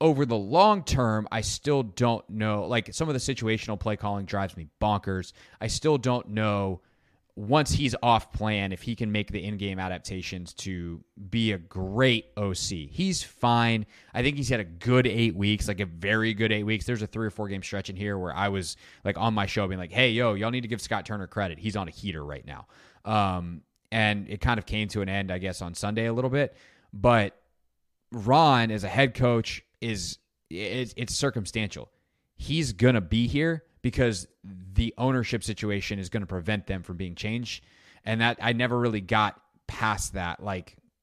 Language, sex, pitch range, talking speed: English, male, 95-115 Hz, 200 wpm